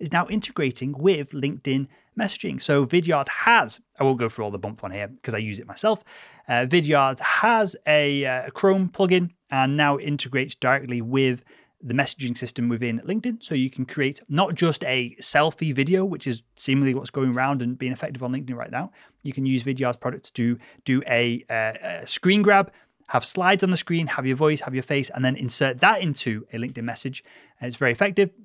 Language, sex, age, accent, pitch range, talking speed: English, male, 30-49, British, 125-170 Hz, 205 wpm